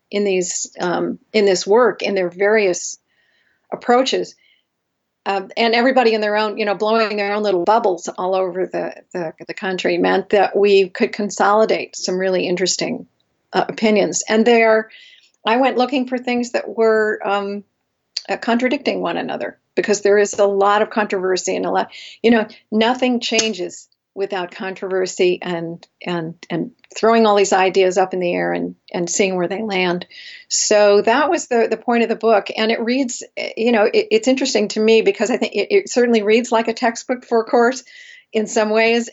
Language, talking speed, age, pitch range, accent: English, 185 wpm, 50-69, 190-225 Hz, American